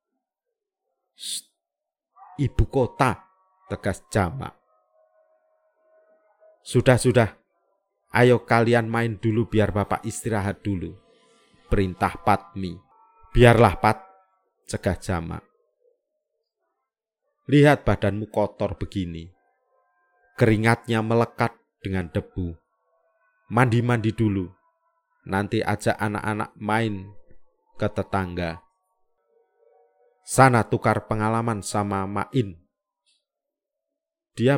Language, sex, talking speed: Indonesian, male, 70 wpm